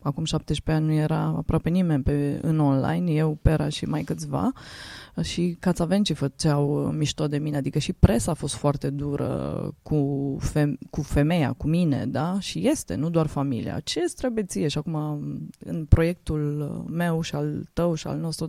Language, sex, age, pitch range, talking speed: English, female, 20-39, 145-180 Hz, 180 wpm